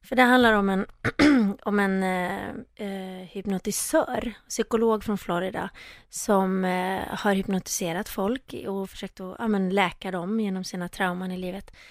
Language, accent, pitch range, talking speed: Swedish, native, 190-245 Hz, 145 wpm